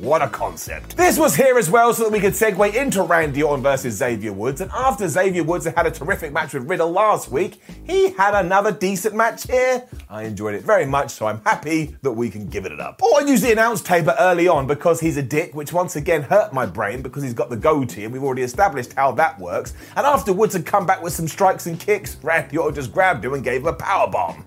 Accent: British